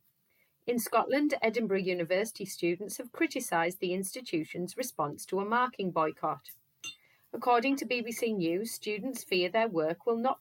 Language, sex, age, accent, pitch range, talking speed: English, female, 30-49, British, 165-235 Hz, 140 wpm